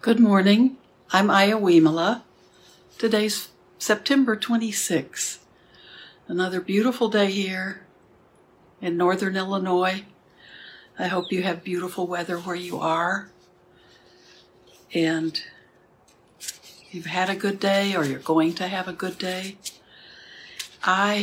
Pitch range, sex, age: 170-200 Hz, female, 60-79